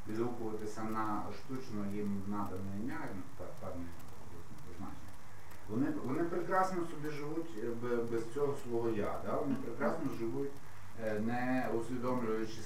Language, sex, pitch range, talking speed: Ukrainian, male, 105-130 Hz, 110 wpm